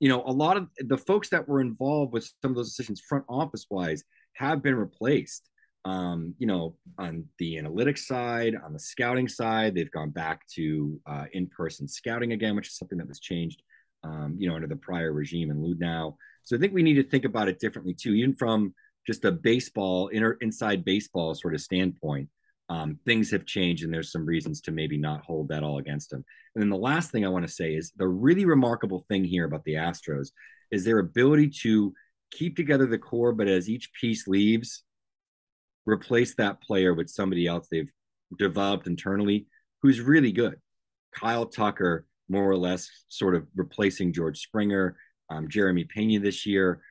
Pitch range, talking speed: 85-115 Hz, 195 wpm